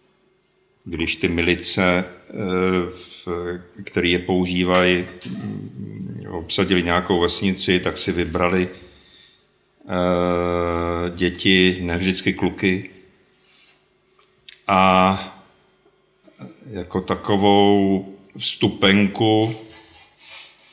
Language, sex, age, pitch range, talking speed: Slovak, male, 50-69, 90-100 Hz, 55 wpm